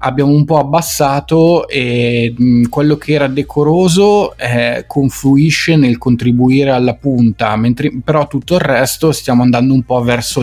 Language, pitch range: Italian, 125-165 Hz